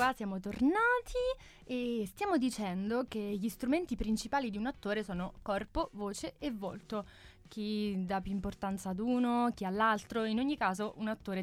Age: 20-39